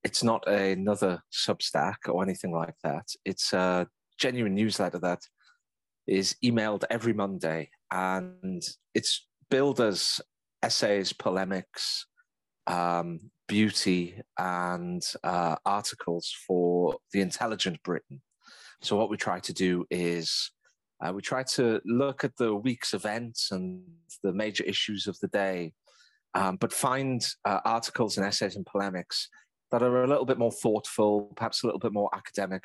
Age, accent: 30-49, British